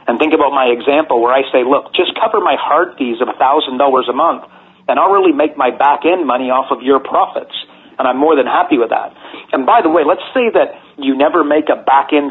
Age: 40-59